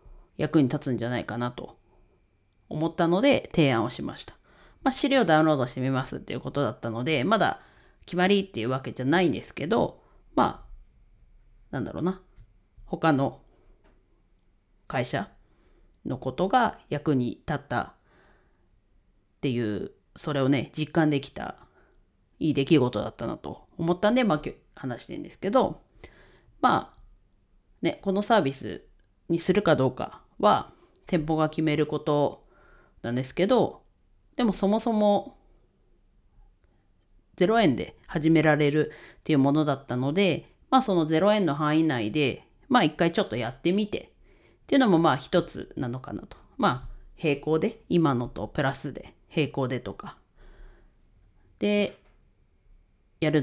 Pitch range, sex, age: 125-175 Hz, female, 40-59